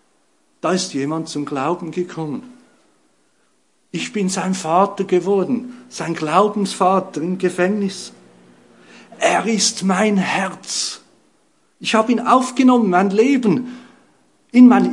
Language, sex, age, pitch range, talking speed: English, male, 50-69, 170-250 Hz, 110 wpm